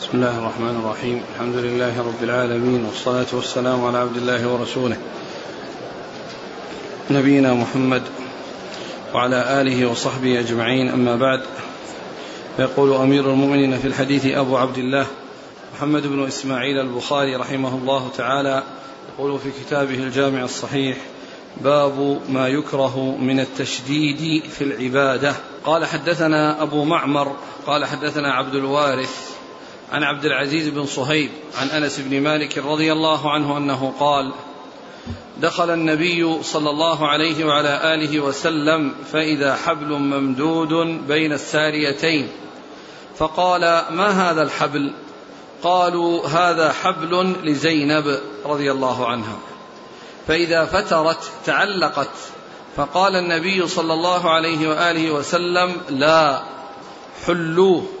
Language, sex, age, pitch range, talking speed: Arabic, male, 40-59, 130-155 Hz, 110 wpm